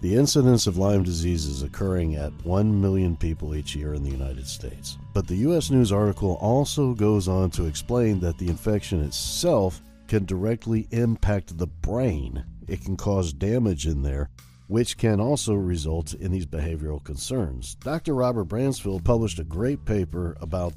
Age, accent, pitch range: 50-69, American, 80-110 Hz